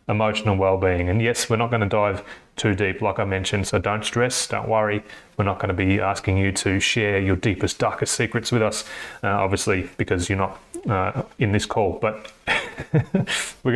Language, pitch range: English, 100-120 Hz